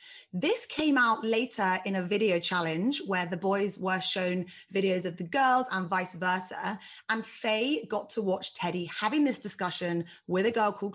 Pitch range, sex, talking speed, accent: 175-225 Hz, female, 180 wpm, British